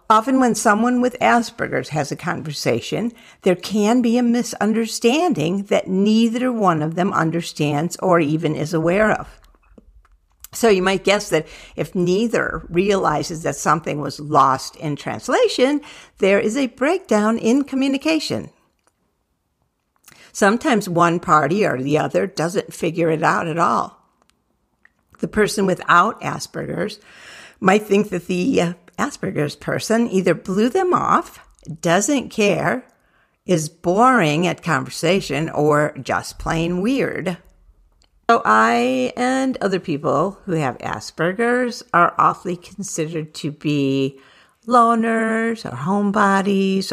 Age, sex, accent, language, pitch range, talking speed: 60-79, female, American, English, 160-225 Hz, 125 wpm